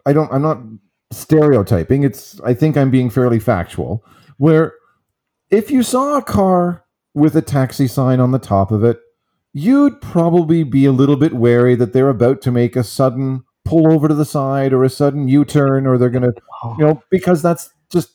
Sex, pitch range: male, 120-160 Hz